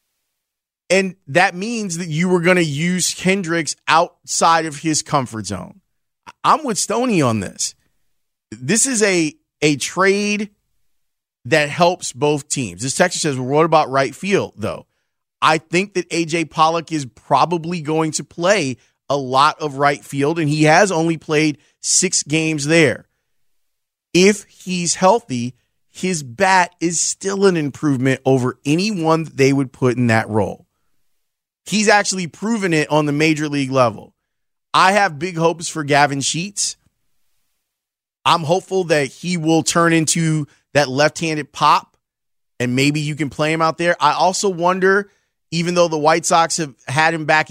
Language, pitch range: English, 140-180 Hz